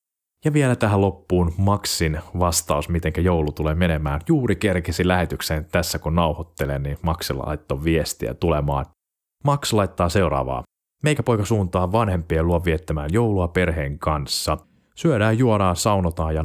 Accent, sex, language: native, male, Finnish